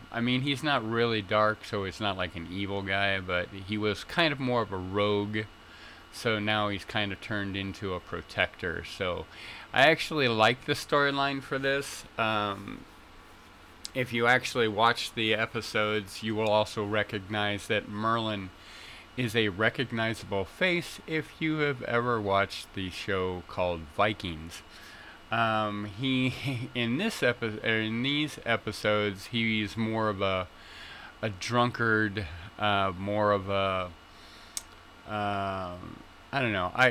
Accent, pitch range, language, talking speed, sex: American, 95-115 Hz, English, 145 wpm, male